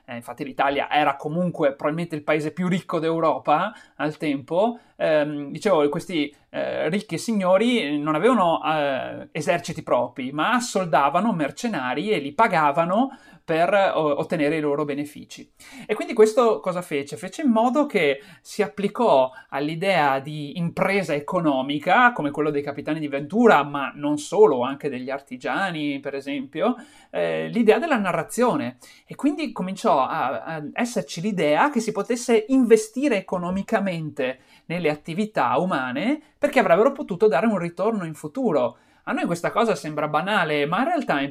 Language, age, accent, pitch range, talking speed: Italian, 30-49, native, 150-225 Hz, 145 wpm